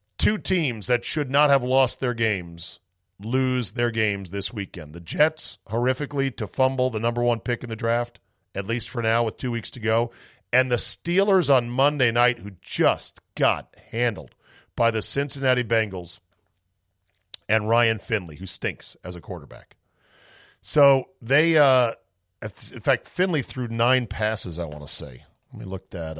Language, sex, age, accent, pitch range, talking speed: English, male, 40-59, American, 90-120 Hz, 170 wpm